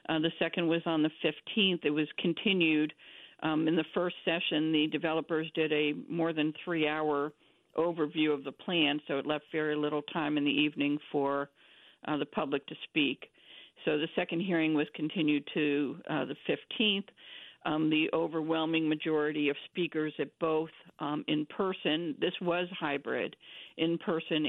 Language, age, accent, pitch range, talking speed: English, 50-69, American, 150-175 Hz, 165 wpm